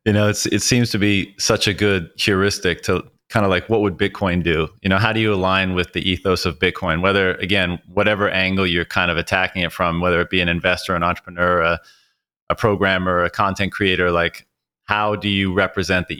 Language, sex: English, male